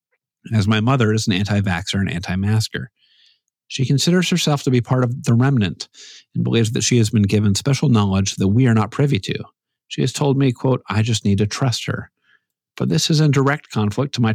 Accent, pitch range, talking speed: American, 100-135 Hz, 220 wpm